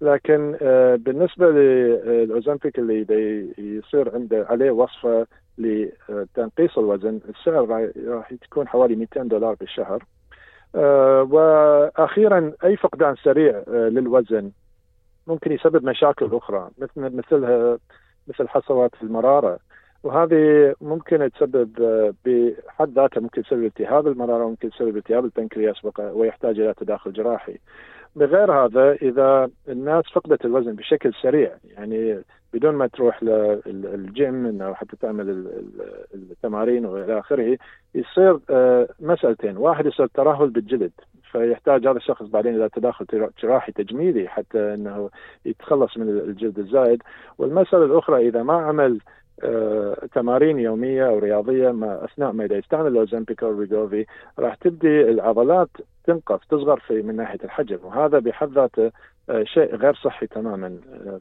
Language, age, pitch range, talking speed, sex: Arabic, 50-69, 110-150 Hz, 115 wpm, male